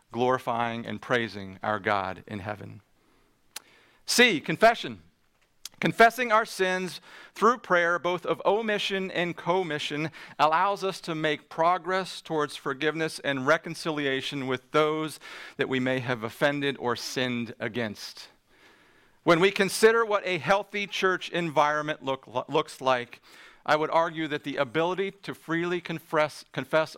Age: 40-59